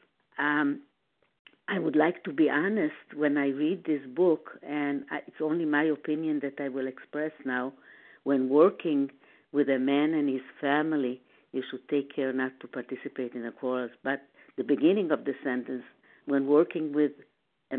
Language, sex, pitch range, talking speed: English, female, 140-195 Hz, 170 wpm